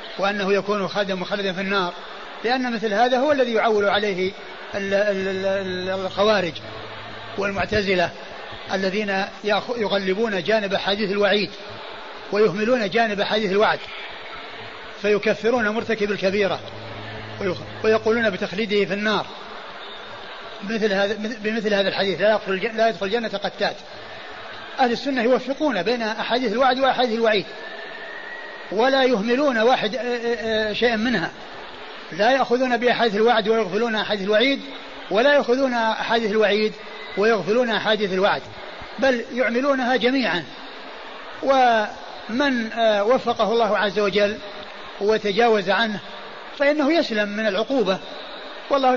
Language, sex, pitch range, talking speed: Arabic, male, 205-245 Hz, 100 wpm